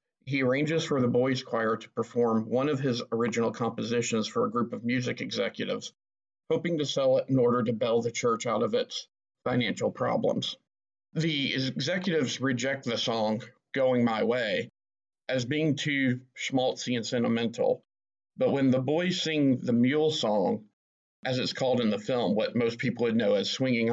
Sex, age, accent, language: male, 50-69, American, English